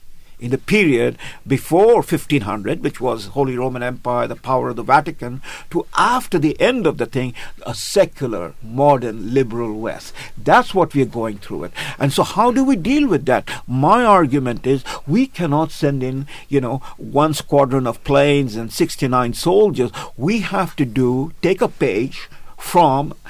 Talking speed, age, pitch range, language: 165 wpm, 50-69, 125-155 Hz, English